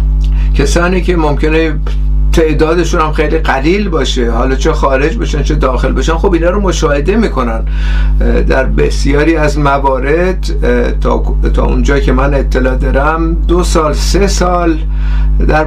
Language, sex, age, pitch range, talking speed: Persian, male, 50-69, 130-175 Hz, 140 wpm